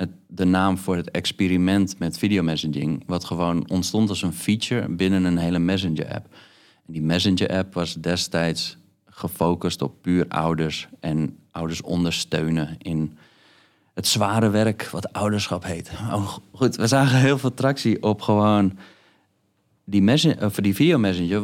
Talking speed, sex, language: 135 wpm, male, Dutch